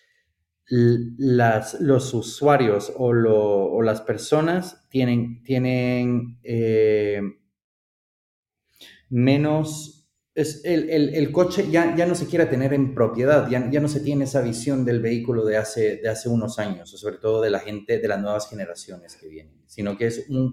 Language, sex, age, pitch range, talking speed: Spanish, male, 30-49, 105-135 Hz, 160 wpm